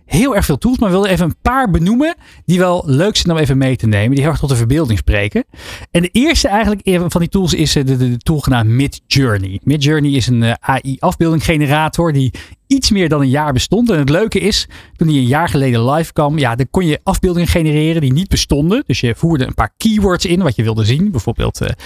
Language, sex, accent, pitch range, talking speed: Dutch, male, Dutch, 130-180 Hz, 235 wpm